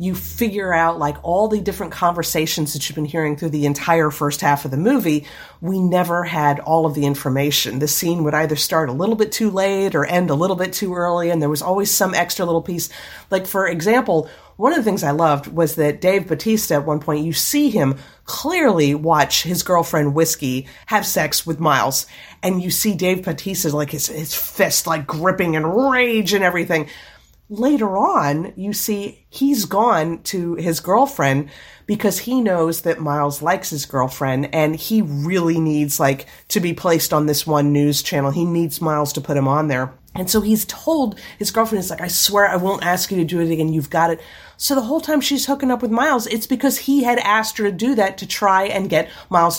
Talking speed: 215 wpm